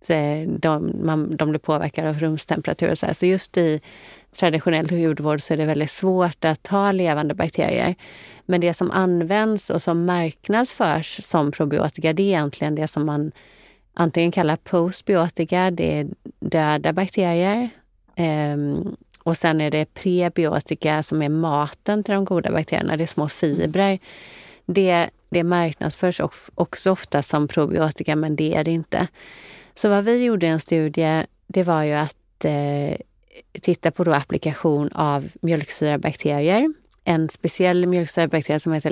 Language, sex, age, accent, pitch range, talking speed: Swedish, female, 30-49, native, 155-185 Hz, 145 wpm